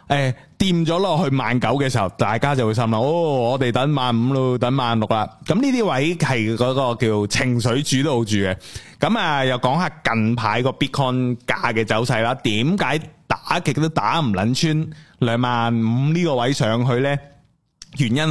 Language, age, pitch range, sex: Chinese, 20-39, 115-160 Hz, male